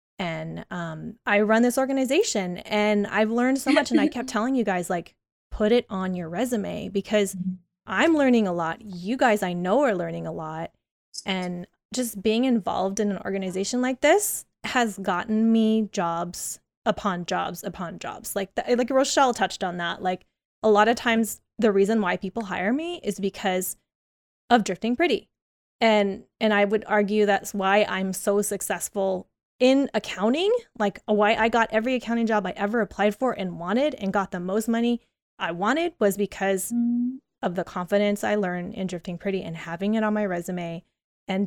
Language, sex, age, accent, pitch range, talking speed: English, female, 20-39, American, 190-235 Hz, 180 wpm